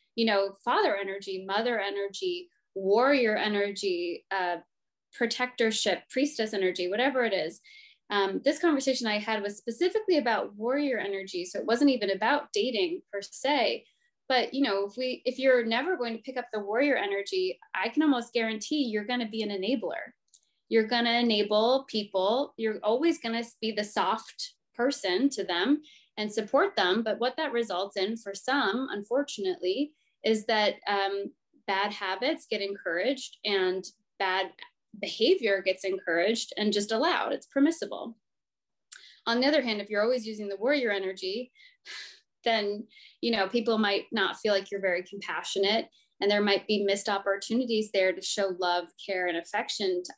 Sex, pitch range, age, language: female, 200-265 Hz, 20-39, English